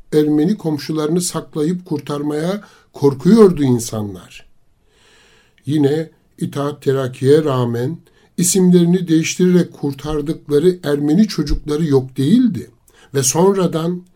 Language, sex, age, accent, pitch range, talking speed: Turkish, male, 60-79, native, 130-175 Hz, 80 wpm